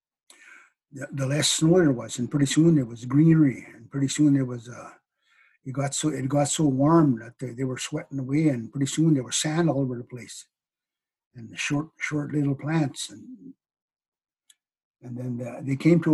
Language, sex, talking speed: English, male, 195 wpm